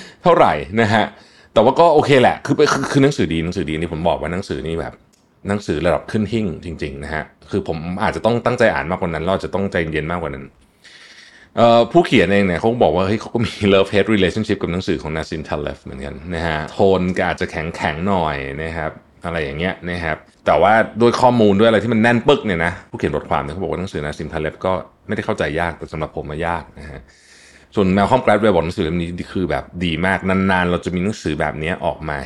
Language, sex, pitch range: Thai, male, 80-110 Hz